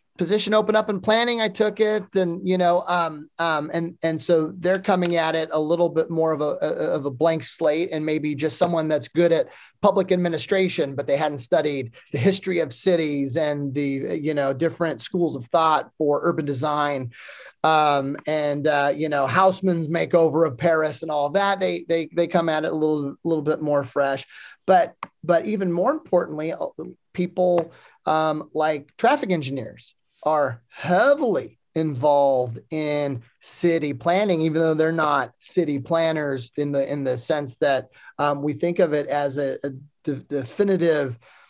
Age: 30-49